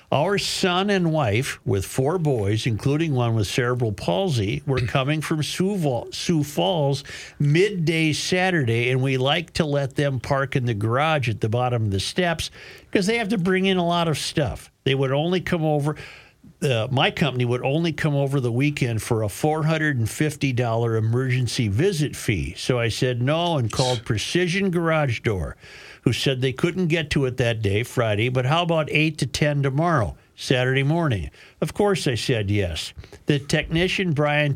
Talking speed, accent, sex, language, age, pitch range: 175 wpm, American, male, English, 50-69, 125-155 Hz